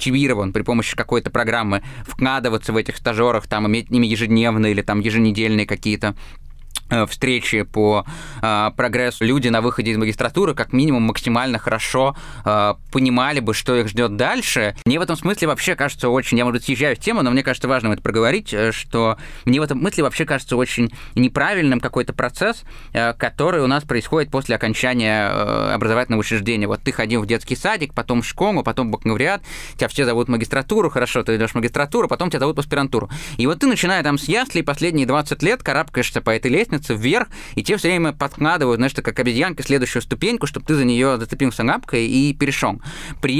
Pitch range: 115-150 Hz